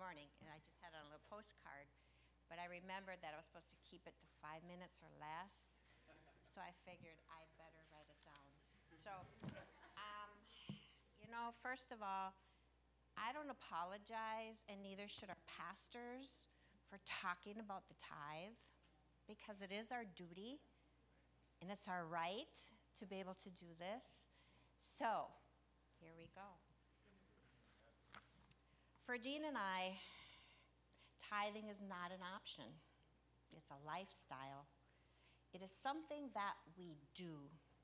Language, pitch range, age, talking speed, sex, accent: English, 150-205 Hz, 50-69, 140 wpm, female, American